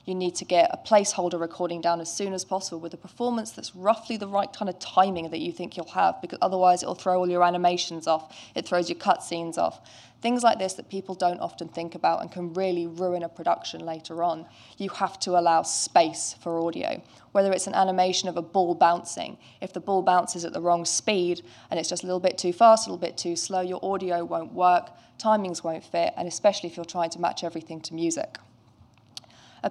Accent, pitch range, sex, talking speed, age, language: British, 170-195 Hz, female, 225 wpm, 20-39, English